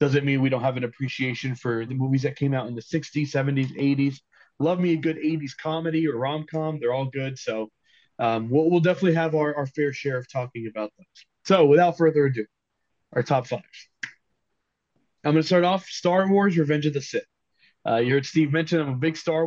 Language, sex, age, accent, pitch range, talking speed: English, male, 20-39, American, 125-155 Hz, 220 wpm